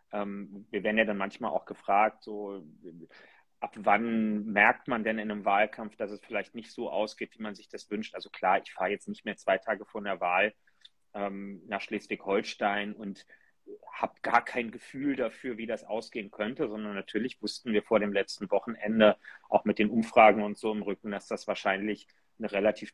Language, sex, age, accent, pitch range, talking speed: German, male, 30-49, German, 105-115 Hz, 195 wpm